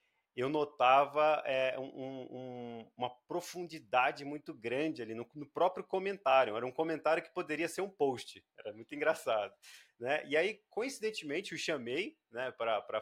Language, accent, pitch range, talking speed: Portuguese, Brazilian, 120-160 Hz, 140 wpm